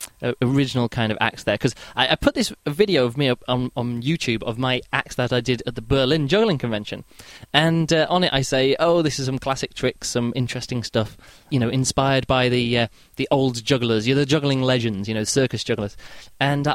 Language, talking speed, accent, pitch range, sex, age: English, 220 wpm, British, 120-165 Hz, male, 20-39